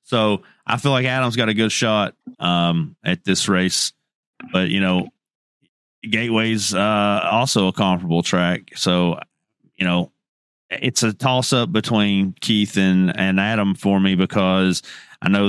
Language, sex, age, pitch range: English, male, 30-49, 95-115 Hz